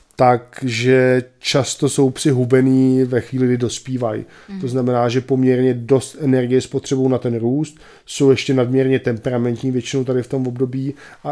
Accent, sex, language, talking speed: native, male, Czech, 150 wpm